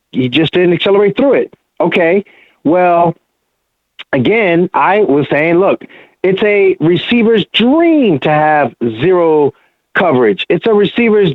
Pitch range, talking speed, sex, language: 170-245 Hz, 125 wpm, male, English